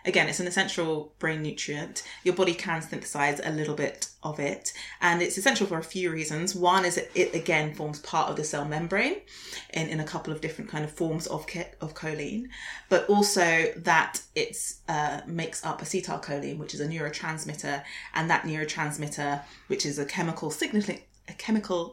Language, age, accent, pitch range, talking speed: English, 20-39, British, 150-175 Hz, 185 wpm